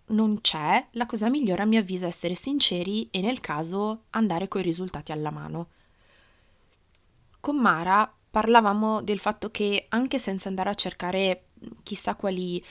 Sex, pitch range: female, 170-215 Hz